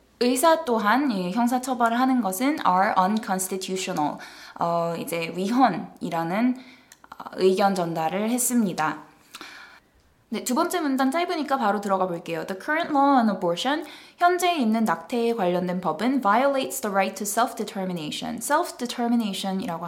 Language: English